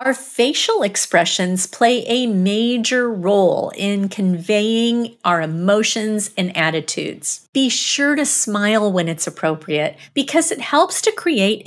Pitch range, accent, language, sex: 190-255 Hz, American, English, female